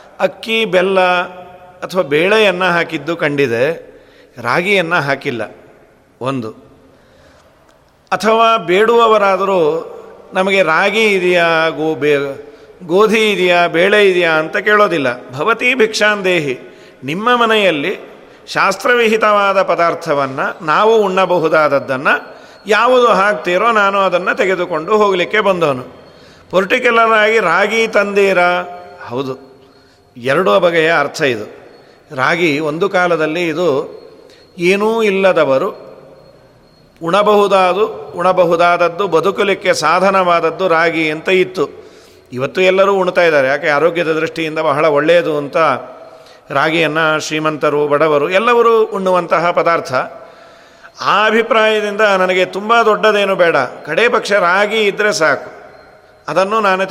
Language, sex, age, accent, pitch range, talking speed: Kannada, male, 40-59, native, 160-210 Hz, 90 wpm